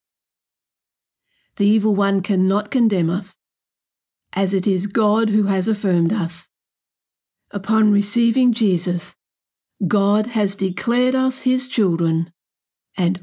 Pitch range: 185-230 Hz